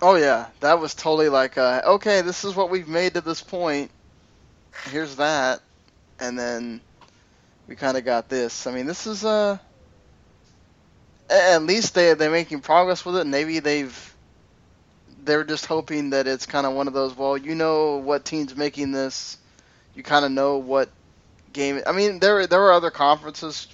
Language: English